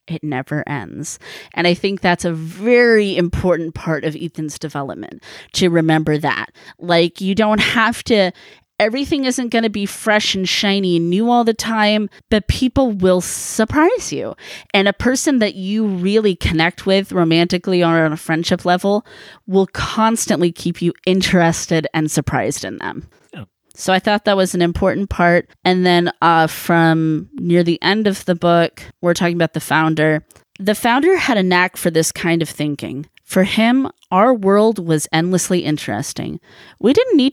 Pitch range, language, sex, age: 165-205 Hz, English, female, 20-39